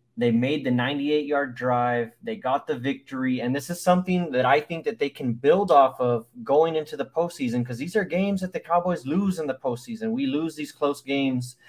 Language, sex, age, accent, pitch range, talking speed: English, male, 20-39, American, 125-165 Hz, 215 wpm